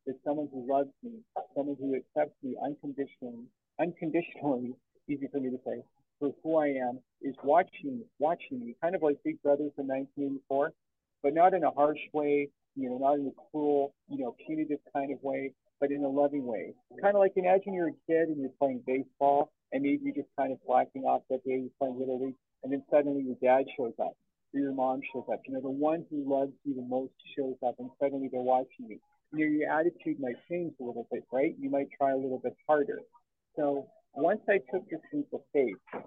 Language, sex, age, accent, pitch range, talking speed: English, male, 50-69, American, 135-165 Hz, 220 wpm